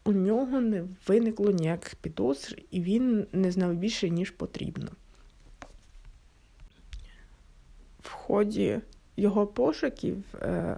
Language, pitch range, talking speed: Ukrainian, 185-220 Hz, 95 wpm